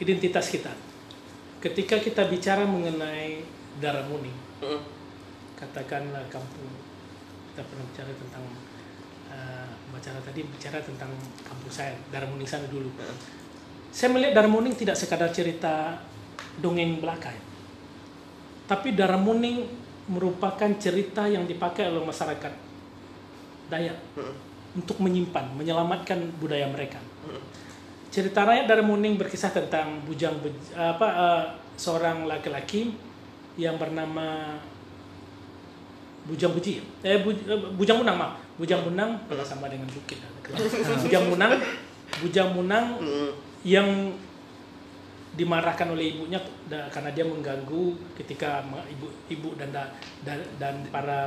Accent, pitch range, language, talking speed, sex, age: native, 140-185 Hz, Indonesian, 105 wpm, male, 40-59